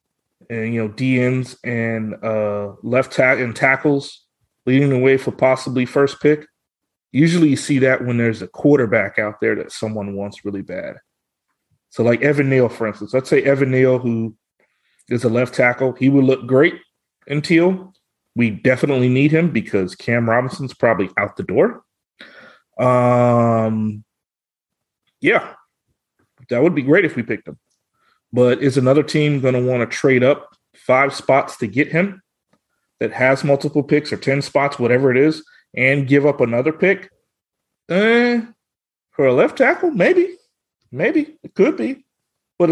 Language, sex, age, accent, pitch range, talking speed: English, male, 30-49, American, 120-150 Hz, 160 wpm